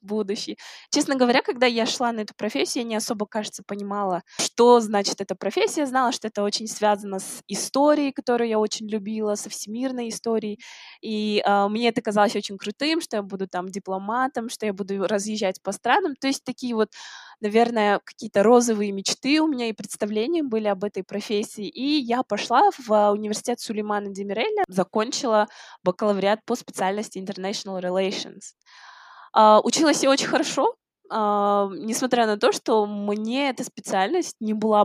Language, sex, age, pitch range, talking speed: Russian, female, 20-39, 200-240 Hz, 155 wpm